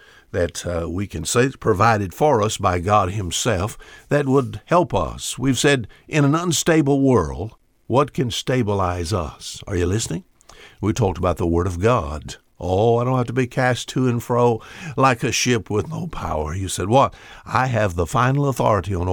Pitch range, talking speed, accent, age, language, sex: 95-130 Hz, 190 wpm, American, 60-79, English, male